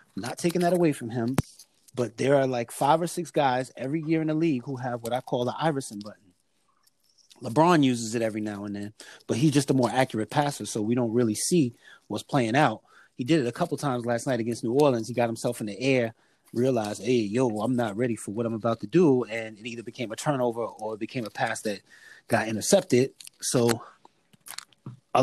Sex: male